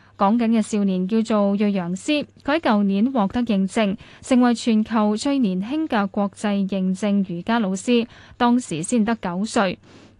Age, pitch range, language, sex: 10-29, 195-250 Hz, Chinese, female